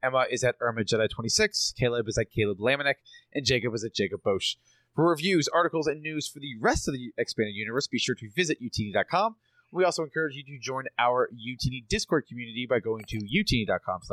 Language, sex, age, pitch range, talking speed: English, male, 30-49, 115-150 Hz, 205 wpm